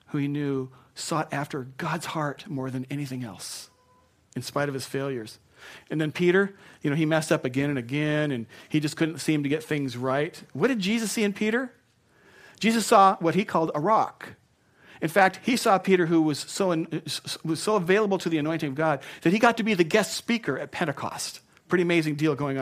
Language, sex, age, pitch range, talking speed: English, male, 40-59, 130-175 Hz, 210 wpm